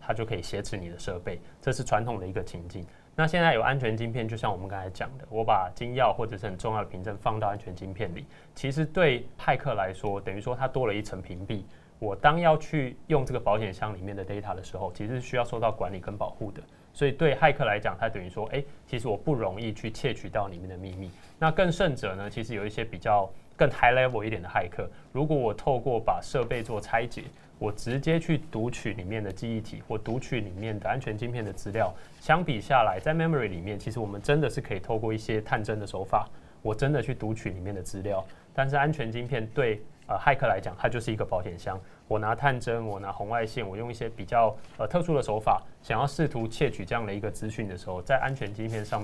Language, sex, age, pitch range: Chinese, male, 20-39, 100-130 Hz